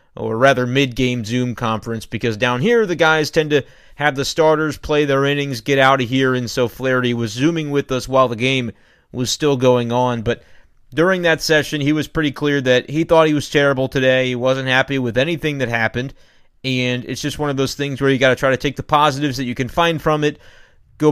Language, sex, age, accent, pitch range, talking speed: English, male, 30-49, American, 125-150 Hz, 230 wpm